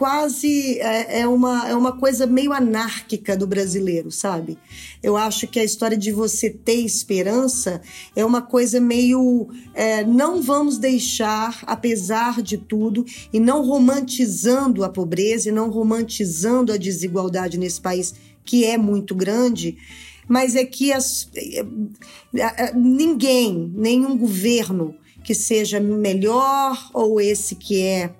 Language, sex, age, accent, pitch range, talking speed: Portuguese, female, 20-39, Brazilian, 200-250 Hz, 125 wpm